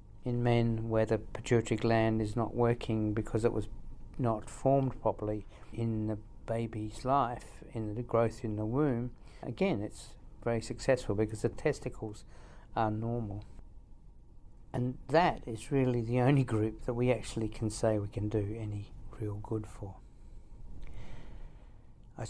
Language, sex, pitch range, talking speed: English, male, 110-120 Hz, 145 wpm